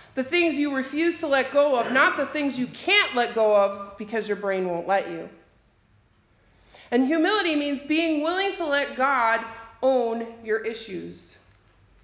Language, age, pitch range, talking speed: English, 40-59, 210-295 Hz, 165 wpm